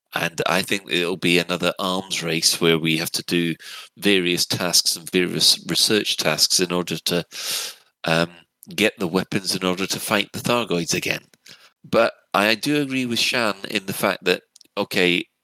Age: 30-49